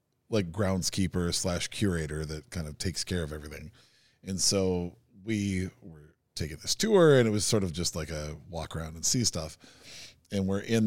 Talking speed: 190 wpm